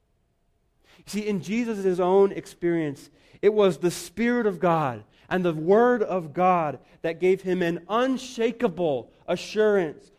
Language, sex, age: English, male, 40-59